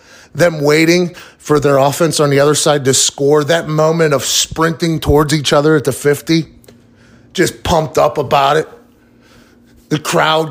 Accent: American